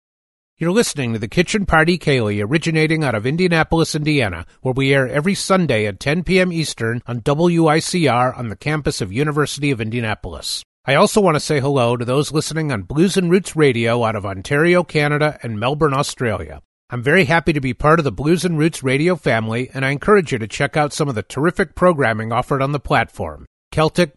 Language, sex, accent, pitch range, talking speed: English, male, American, 120-165 Hz, 200 wpm